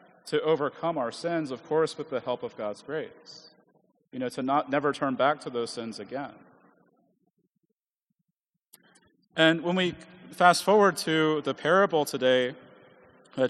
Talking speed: 145 wpm